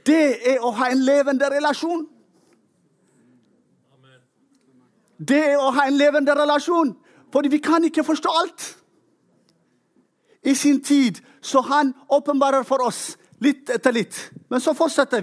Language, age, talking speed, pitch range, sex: English, 40-59, 135 wpm, 230-290 Hz, male